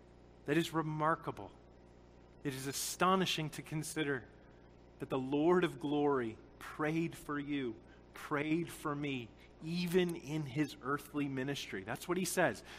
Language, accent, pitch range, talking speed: English, American, 140-205 Hz, 130 wpm